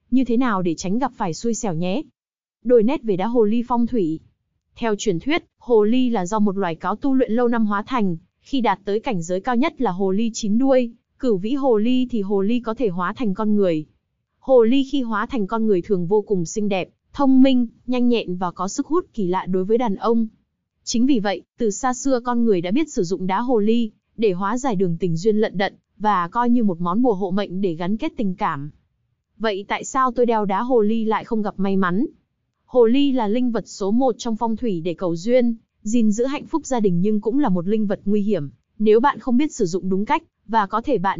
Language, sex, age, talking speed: Vietnamese, female, 20-39, 250 wpm